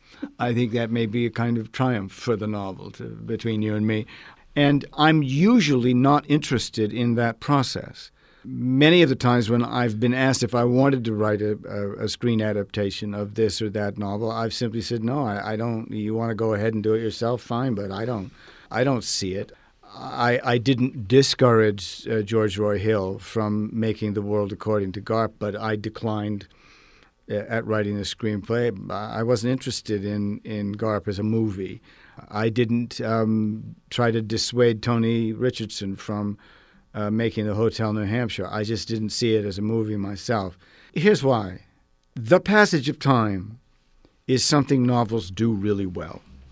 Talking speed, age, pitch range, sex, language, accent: 180 wpm, 50-69, 105-120 Hz, male, English, American